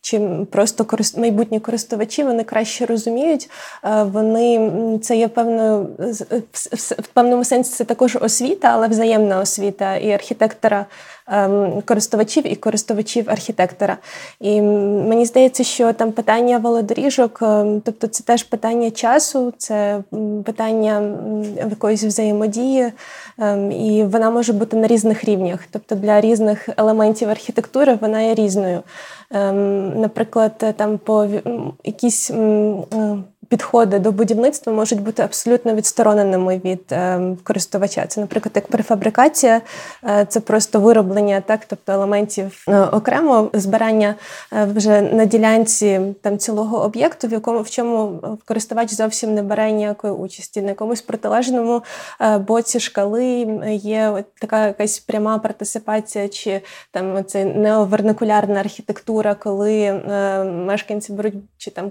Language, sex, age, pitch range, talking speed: Ukrainian, female, 20-39, 205-230 Hz, 120 wpm